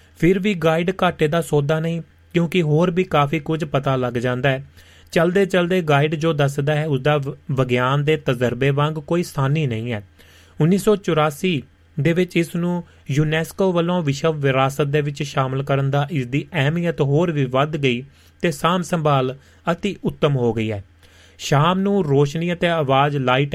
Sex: male